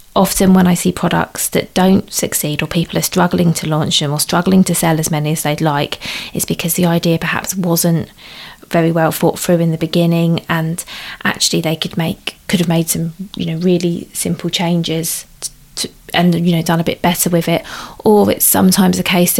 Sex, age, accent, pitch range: female, 20-39, British, 160-180 Hz